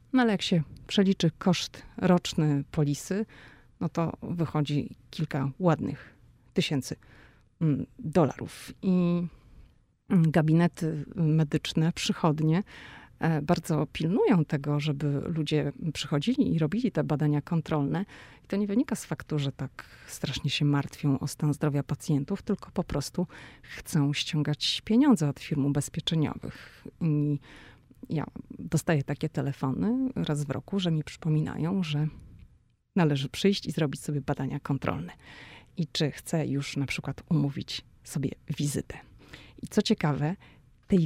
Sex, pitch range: female, 145-175 Hz